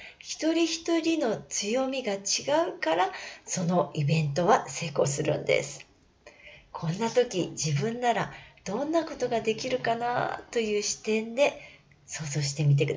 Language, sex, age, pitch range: Japanese, female, 40-59, 160-255 Hz